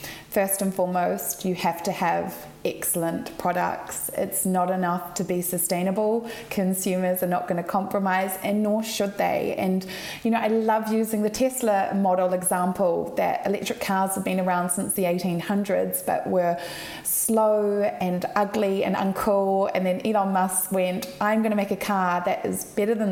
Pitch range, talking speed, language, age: 180-205 Hz, 170 wpm, English, 20-39